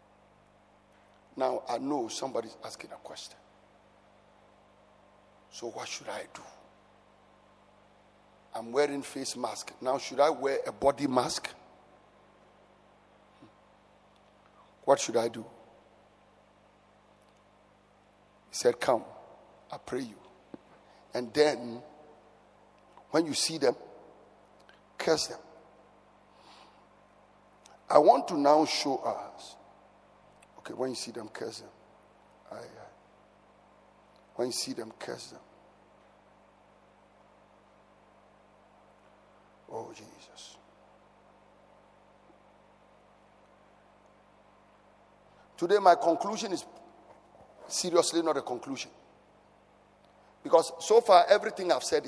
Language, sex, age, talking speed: English, male, 50-69, 90 wpm